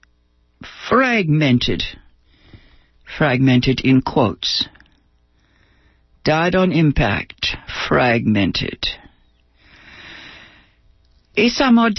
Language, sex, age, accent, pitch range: English, female, 60-79, American, 135-210 Hz